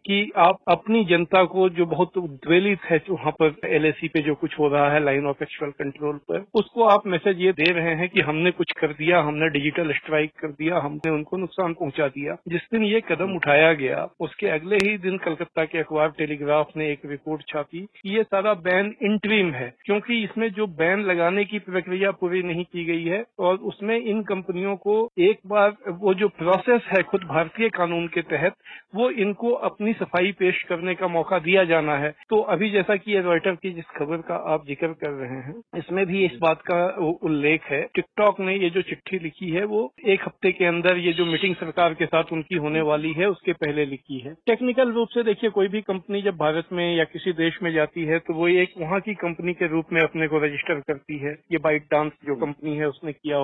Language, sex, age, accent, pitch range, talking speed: Hindi, male, 50-69, native, 155-195 Hz, 220 wpm